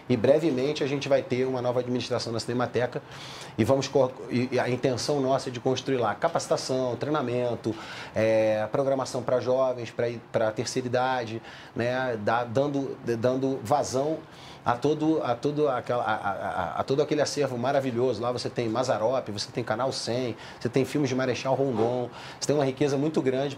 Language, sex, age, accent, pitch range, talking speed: Portuguese, male, 30-49, Brazilian, 120-145 Hz, 175 wpm